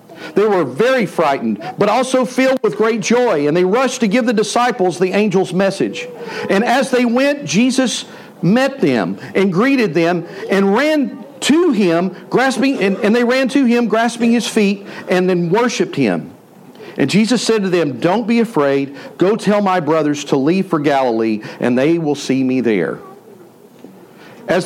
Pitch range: 180-245 Hz